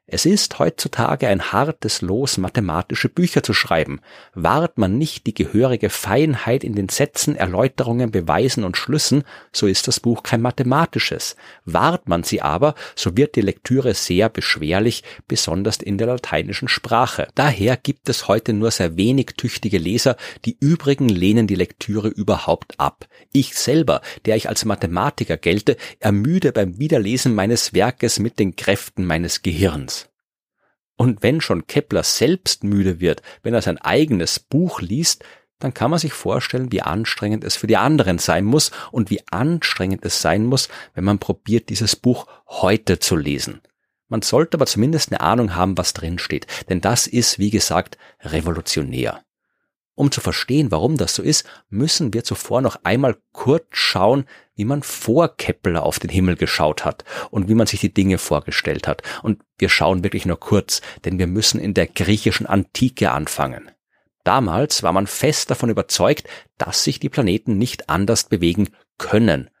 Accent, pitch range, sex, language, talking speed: German, 95-130 Hz, male, German, 165 wpm